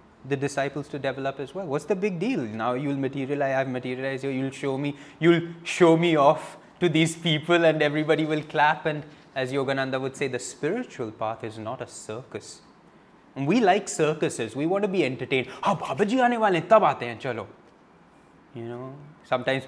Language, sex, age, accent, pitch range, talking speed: English, male, 20-39, Indian, 125-165 Hz, 190 wpm